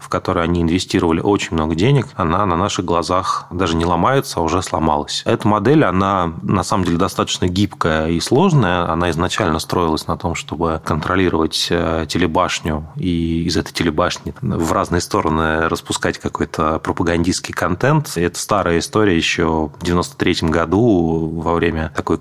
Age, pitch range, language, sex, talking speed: 30-49, 85-95 Hz, Russian, male, 150 wpm